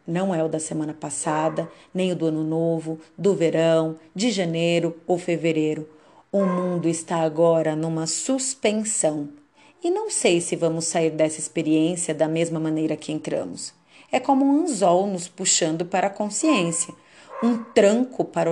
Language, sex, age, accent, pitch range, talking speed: Portuguese, female, 40-59, Brazilian, 160-240 Hz, 155 wpm